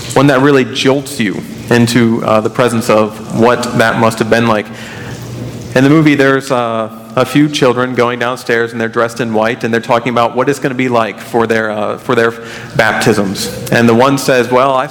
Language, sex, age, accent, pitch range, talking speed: English, male, 40-59, American, 115-130 Hz, 210 wpm